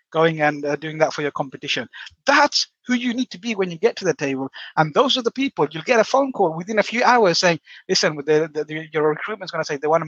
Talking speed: 275 wpm